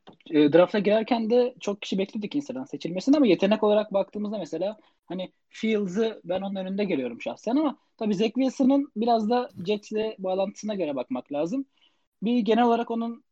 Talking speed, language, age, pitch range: 160 wpm, Turkish, 20-39, 170-240 Hz